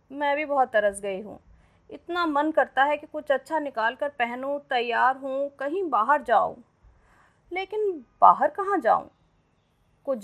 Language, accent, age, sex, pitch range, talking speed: Hindi, native, 30-49, female, 230-325 Hz, 150 wpm